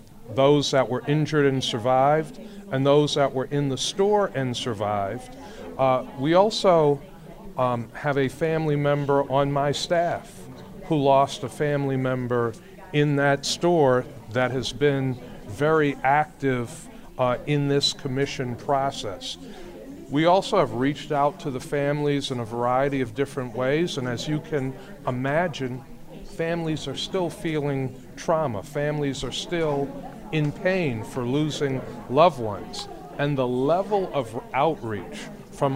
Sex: male